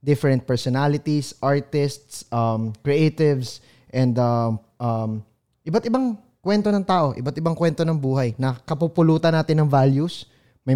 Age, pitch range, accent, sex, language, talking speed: 20-39, 115-150 Hz, Filipino, male, English, 125 wpm